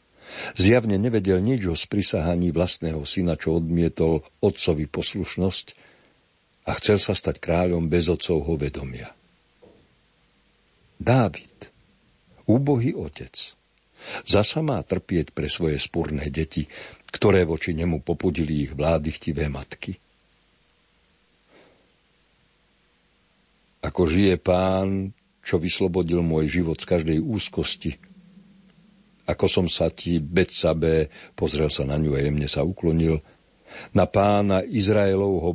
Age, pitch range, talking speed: 60-79, 75-95 Hz, 105 wpm